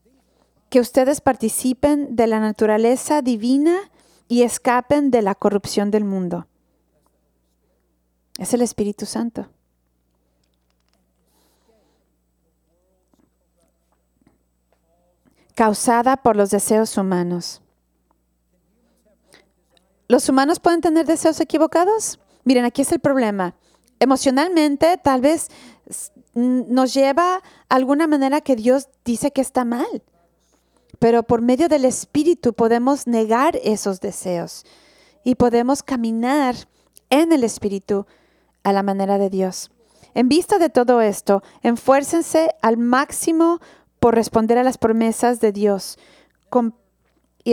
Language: English